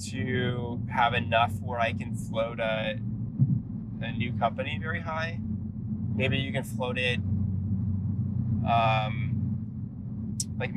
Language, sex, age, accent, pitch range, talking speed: English, male, 20-39, American, 110-120 Hz, 110 wpm